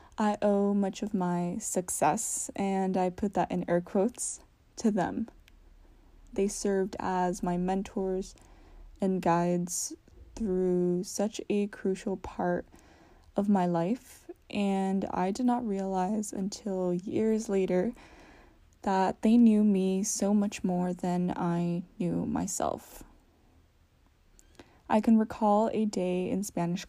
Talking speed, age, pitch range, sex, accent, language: 125 wpm, 10-29, 180-220 Hz, female, American, English